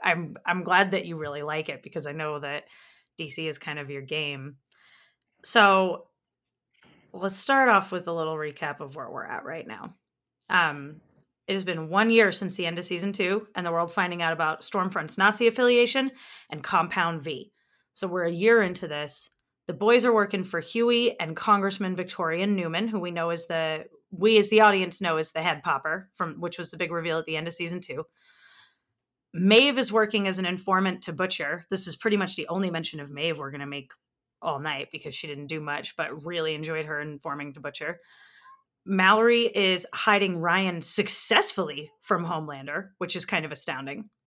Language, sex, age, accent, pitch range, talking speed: English, female, 30-49, American, 160-210 Hz, 195 wpm